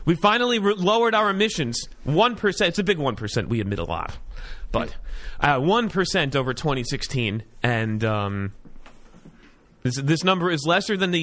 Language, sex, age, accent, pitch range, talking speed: English, male, 30-49, American, 115-175 Hz, 150 wpm